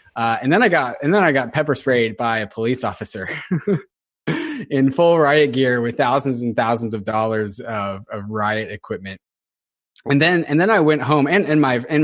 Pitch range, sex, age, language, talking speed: 110-140 Hz, male, 20-39, English, 200 wpm